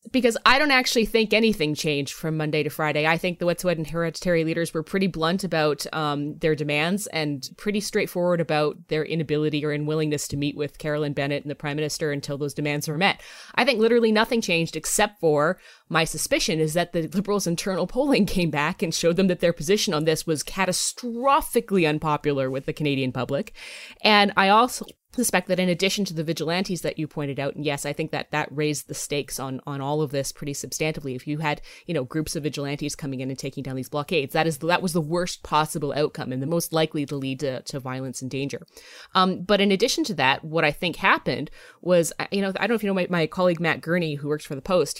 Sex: female